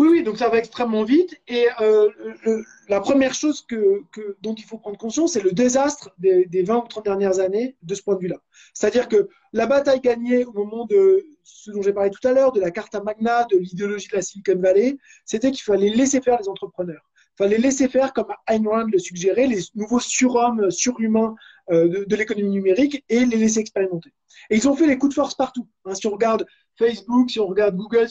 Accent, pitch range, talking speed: French, 200-265 Hz, 230 wpm